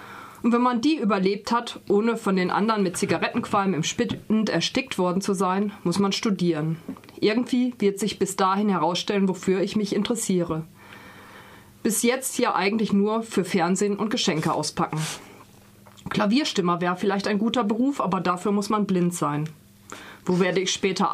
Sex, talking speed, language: female, 160 wpm, German